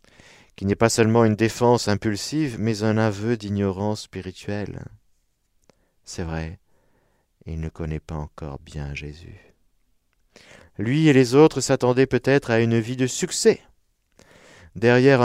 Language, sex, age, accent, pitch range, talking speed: French, male, 50-69, French, 85-135 Hz, 130 wpm